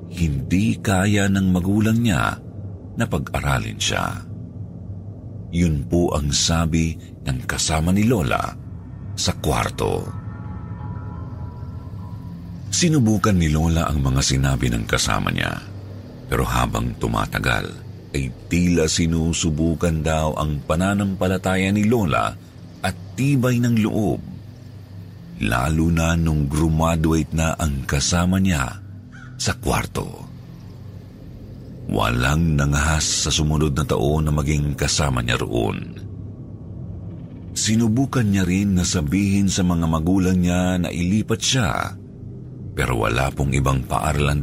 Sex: male